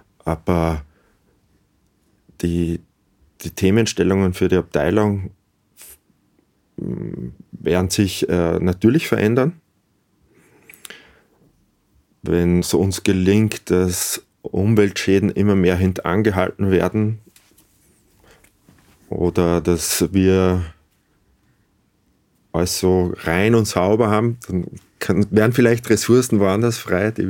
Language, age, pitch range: German, 30-49, 85-105 Hz